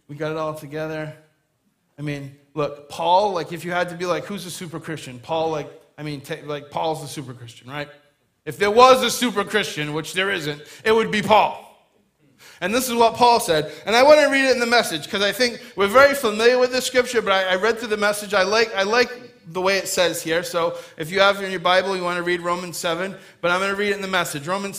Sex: male